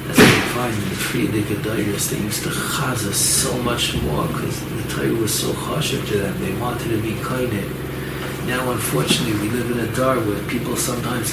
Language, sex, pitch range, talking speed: English, male, 105-140 Hz, 185 wpm